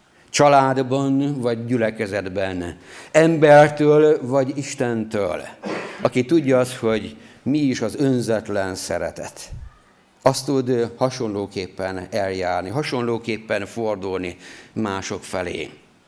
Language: Hungarian